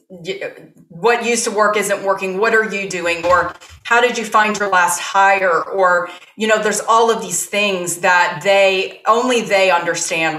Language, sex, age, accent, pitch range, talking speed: English, female, 30-49, American, 170-200 Hz, 180 wpm